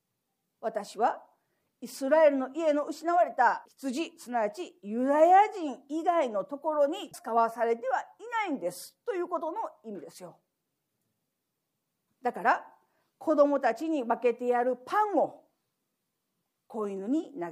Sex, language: female, Japanese